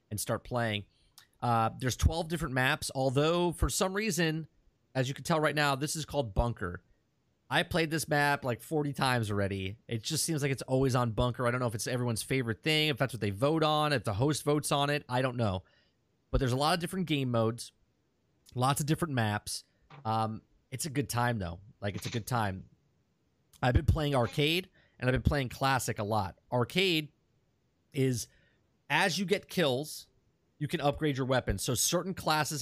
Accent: American